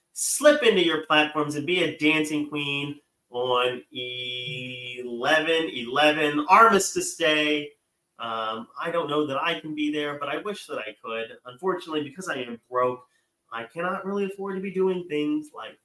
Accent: American